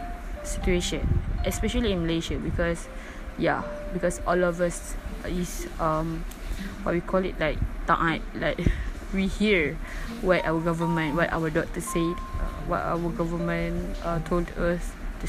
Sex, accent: female, Malaysian